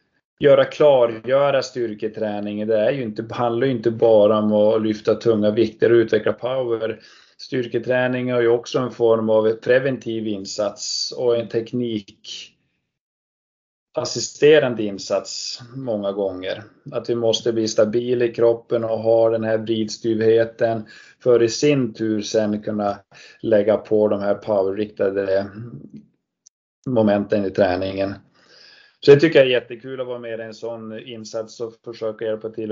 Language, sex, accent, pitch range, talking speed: Swedish, male, native, 110-130 Hz, 145 wpm